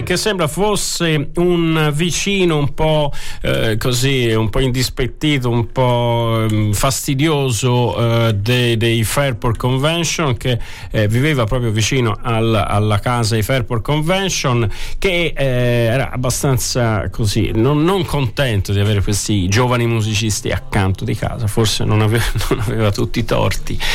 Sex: male